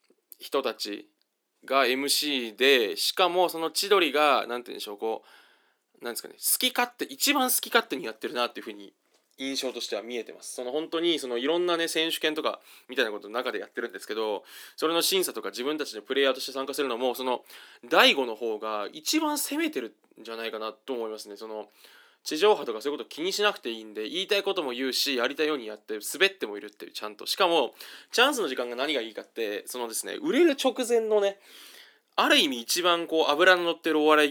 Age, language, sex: 20-39, Japanese, male